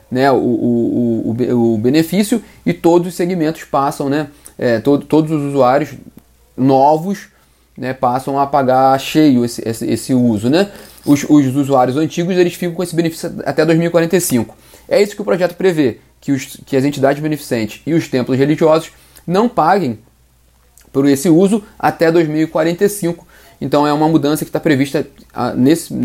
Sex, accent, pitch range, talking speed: male, Brazilian, 135-175 Hz, 150 wpm